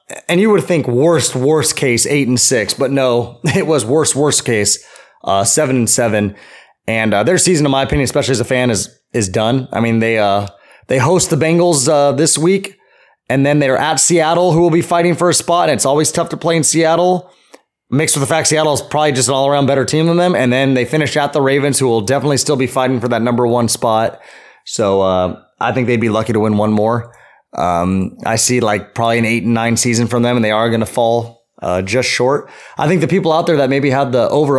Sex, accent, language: male, American, English